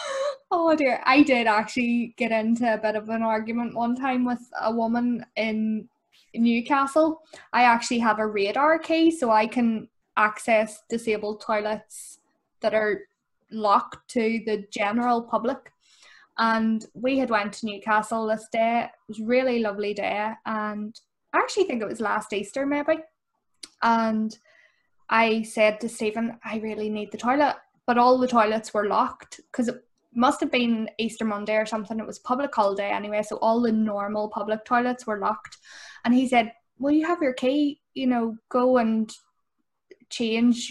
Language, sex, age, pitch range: English, female, 10-29, 215-255 Hz